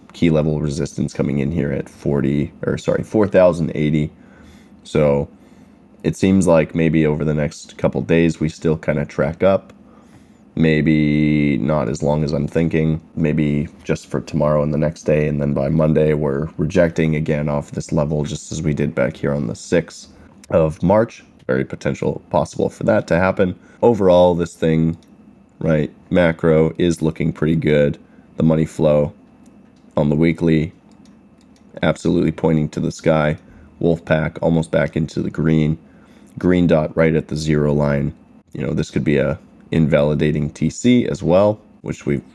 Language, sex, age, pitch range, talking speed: English, male, 20-39, 75-85 Hz, 165 wpm